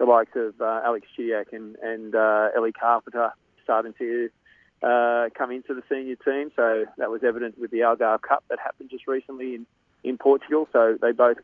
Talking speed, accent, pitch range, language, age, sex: 195 wpm, Australian, 115-130 Hz, English, 30-49, male